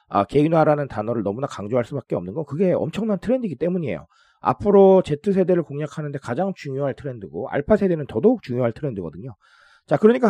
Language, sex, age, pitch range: Korean, male, 40-59, 120-190 Hz